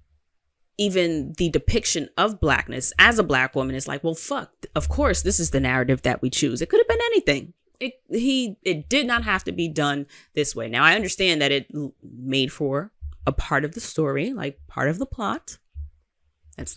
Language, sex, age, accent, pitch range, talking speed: English, female, 20-39, American, 130-175 Hz, 195 wpm